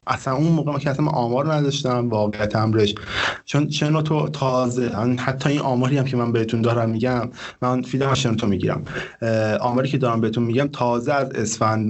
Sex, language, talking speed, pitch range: male, Persian, 185 wpm, 105-125 Hz